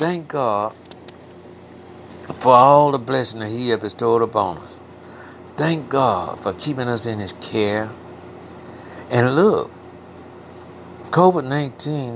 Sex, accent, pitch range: male, American, 95-115 Hz